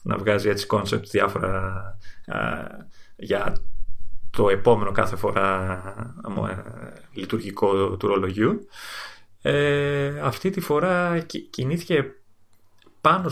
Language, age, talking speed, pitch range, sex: Greek, 30-49, 110 wpm, 100-120 Hz, male